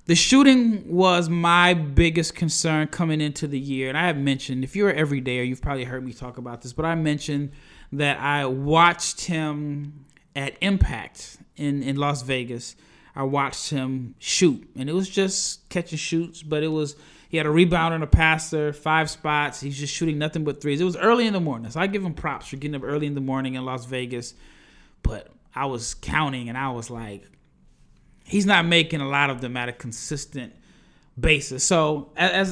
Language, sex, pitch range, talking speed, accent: English, male, 140-170 Hz, 200 wpm, American